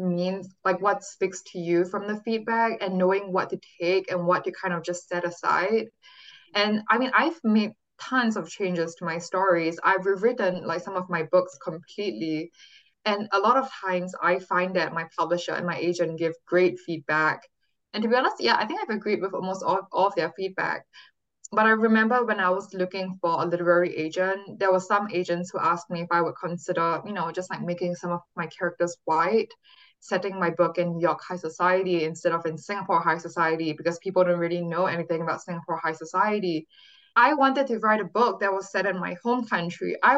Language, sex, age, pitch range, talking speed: English, female, 10-29, 175-215 Hz, 215 wpm